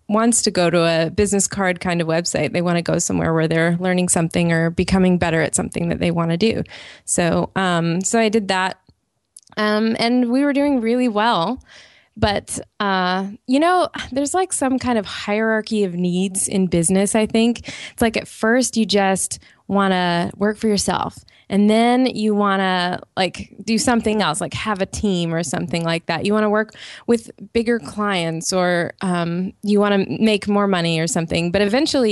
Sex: female